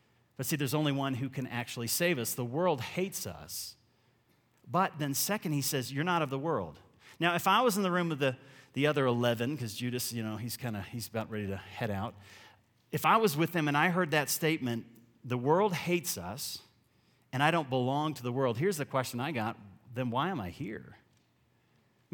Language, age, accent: English, 40-59, American